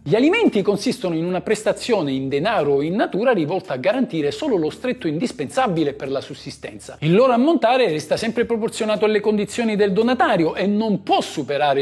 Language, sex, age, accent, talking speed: Italian, male, 50-69, native, 180 wpm